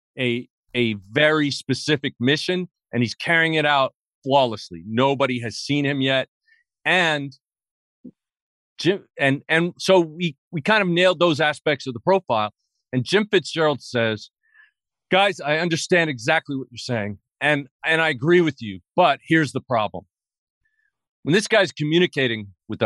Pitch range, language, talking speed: 140-215 Hz, English, 150 wpm